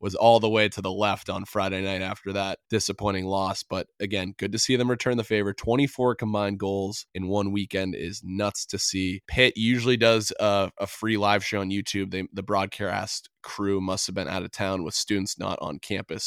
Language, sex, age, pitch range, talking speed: English, male, 20-39, 95-115 Hz, 210 wpm